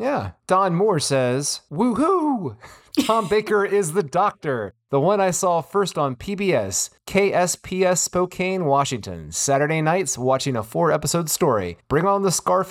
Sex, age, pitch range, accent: male, 30-49, 125-170 Hz, American